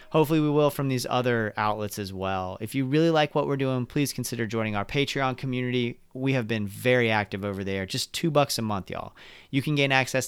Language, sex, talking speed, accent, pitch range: English, male, 230 wpm, American, 105-135 Hz